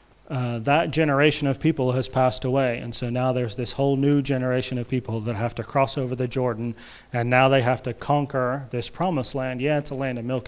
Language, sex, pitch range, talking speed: English, male, 120-140 Hz, 230 wpm